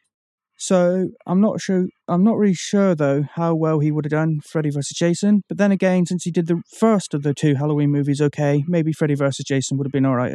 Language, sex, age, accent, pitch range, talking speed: English, male, 30-49, British, 150-190 Hz, 230 wpm